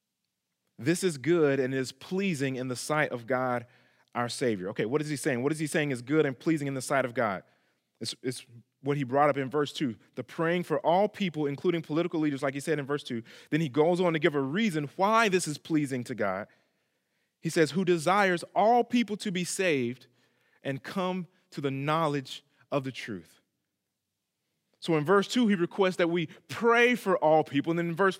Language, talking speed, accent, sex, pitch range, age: English, 215 wpm, American, male, 145-190 Hz, 30-49